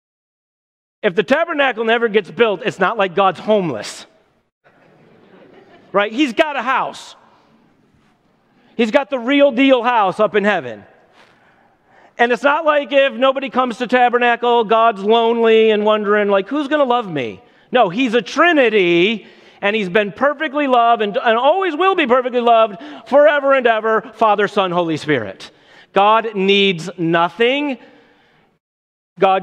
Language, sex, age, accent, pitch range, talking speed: English, male, 40-59, American, 190-250 Hz, 145 wpm